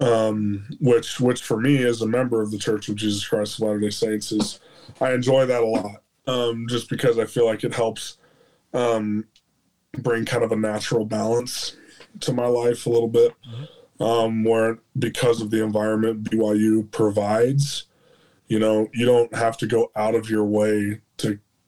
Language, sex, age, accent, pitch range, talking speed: English, male, 20-39, American, 105-120 Hz, 175 wpm